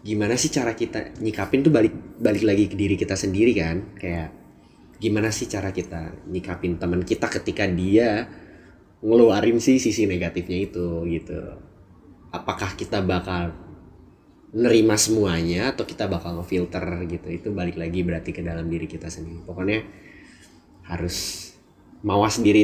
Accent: native